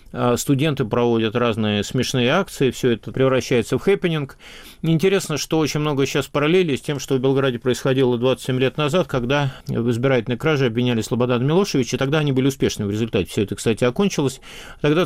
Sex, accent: male, native